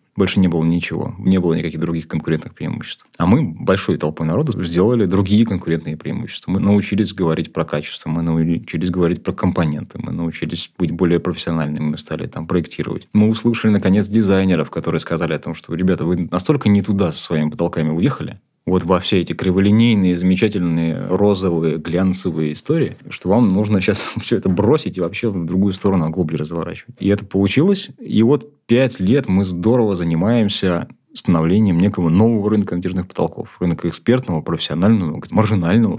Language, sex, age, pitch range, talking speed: Russian, male, 20-39, 85-105 Hz, 165 wpm